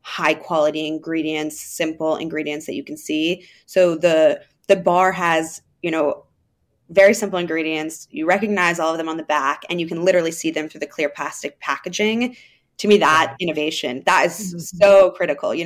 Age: 20-39